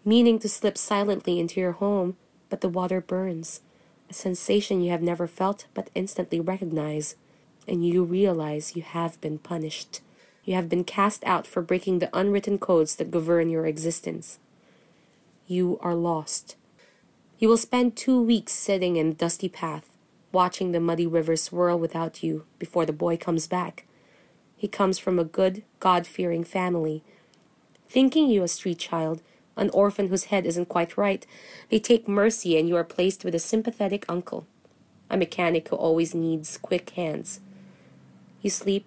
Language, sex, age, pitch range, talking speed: English, female, 20-39, 165-195 Hz, 160 wpm